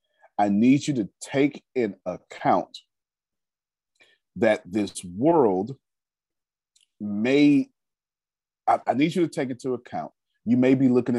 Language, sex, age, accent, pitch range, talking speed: English, male, 40-59, American, 100-145 Hz, 125 wpm